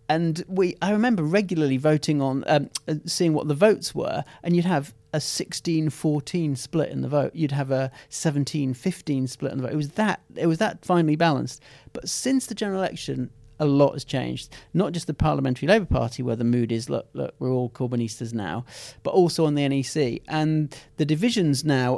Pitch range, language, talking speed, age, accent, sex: 135-160 Hz, English, 200 wpm, 40-59, British, male